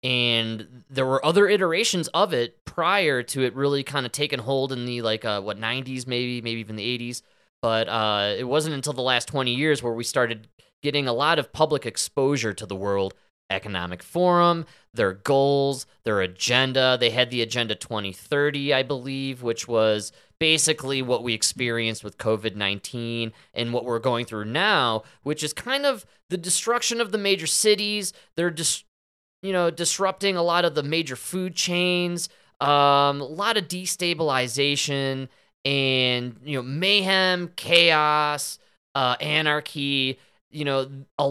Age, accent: 20-39, American